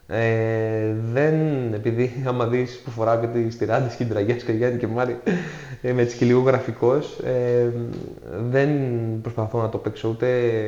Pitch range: 115-140 Hz